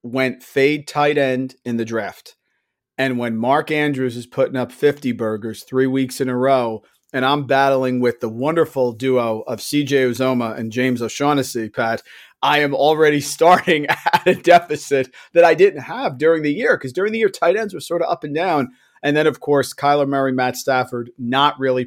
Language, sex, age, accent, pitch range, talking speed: English, male, 40-59, American, 125-150 Hz, 195 wpm